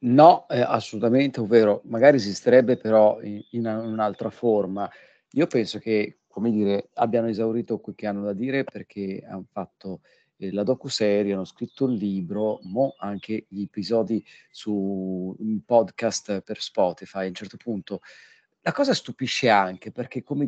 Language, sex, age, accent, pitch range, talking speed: Italian, male, 40-59, native, 105-130 Hz, 150 wpm